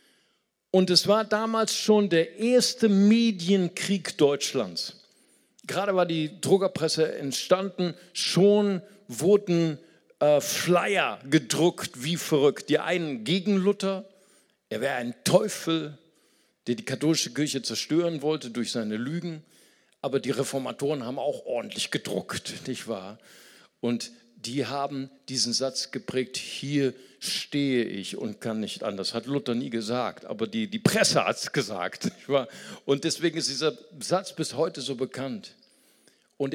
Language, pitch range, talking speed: German, 130-185 Hz, 135 wpm